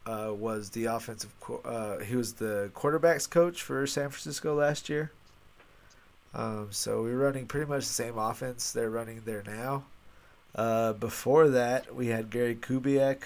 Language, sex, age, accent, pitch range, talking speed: English, male, 30-49, American, 105-125 Hz, 165 wpm